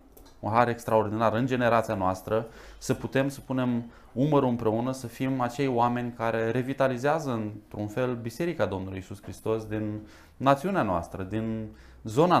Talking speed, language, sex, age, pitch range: 140 wpm, Romanian, male, 20-39, 110-140 Hz